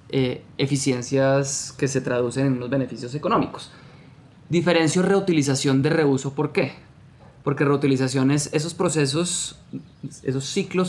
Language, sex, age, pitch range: Spanish, male, 20-39, 135-155 Hz